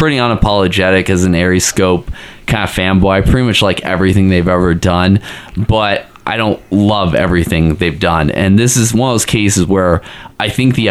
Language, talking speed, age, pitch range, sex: English, 195 wpm, 20-39, 90-105 Hz, male